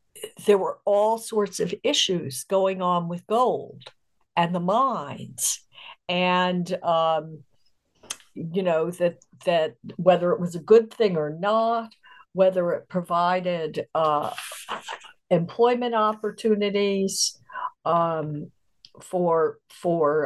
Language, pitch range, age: English, 175-210 Hz, 60-79